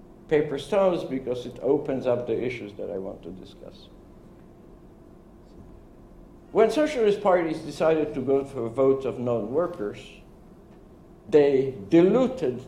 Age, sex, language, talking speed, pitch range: 60-79, male, English, 120 wpm, 135-185 Hz